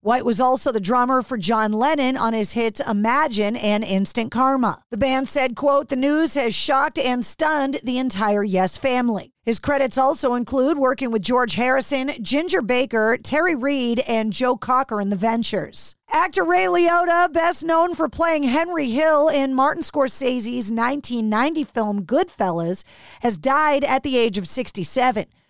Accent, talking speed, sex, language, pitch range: American, 160 wpm, female, English, 230-285 Hz